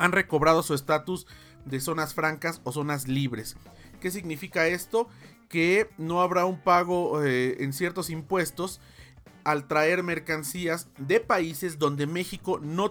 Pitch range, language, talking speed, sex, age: 140-185 Hz, Spanish, 140 wpm, male, 40-59